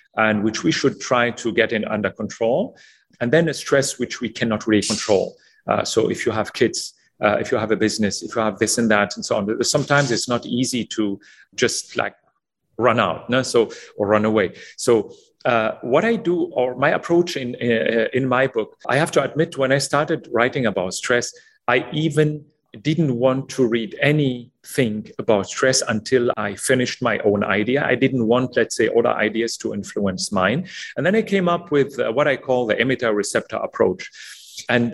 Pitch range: 110-145 Hz